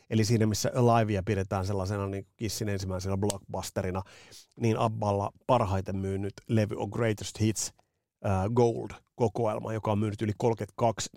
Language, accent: Finnish, native